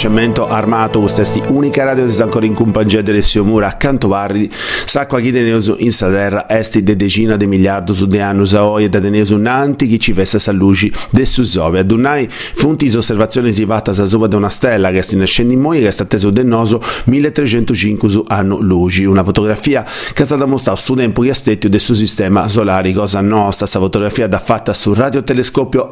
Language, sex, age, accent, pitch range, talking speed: Italian, male, 50-69, native, 100-115 Hz, 190 wpm